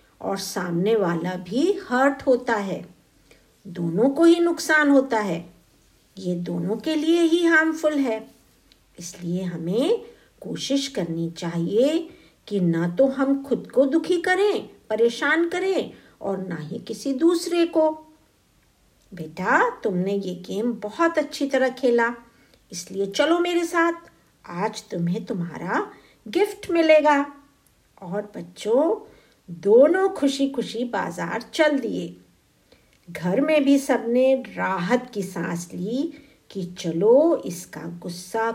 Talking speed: 120 wpm